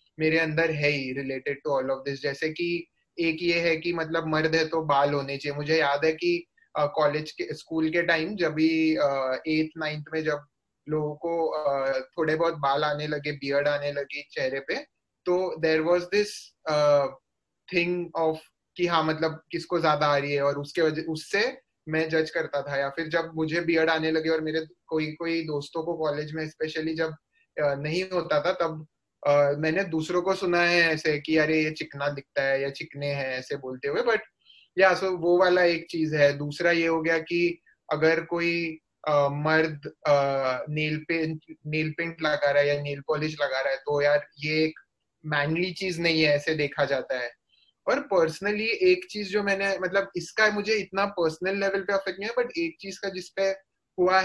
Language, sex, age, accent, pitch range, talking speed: Hindi, male, 20-39, native, 150-170 Hz, 190 wpm